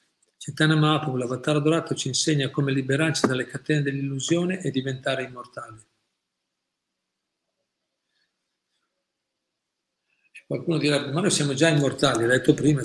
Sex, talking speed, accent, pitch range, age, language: male, 115 wpm, native, 130-150 Hz, 50-69, Italian